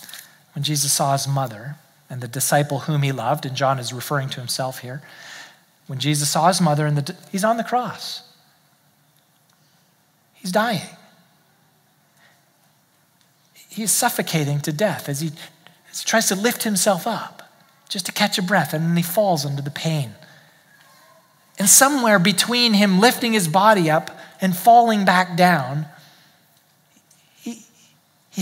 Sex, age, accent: male, 40-59, American